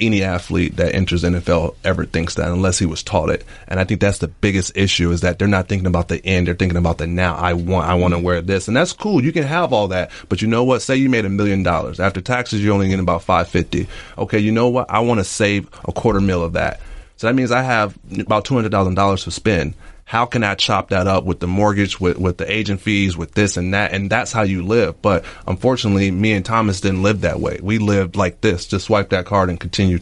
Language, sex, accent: English, male, American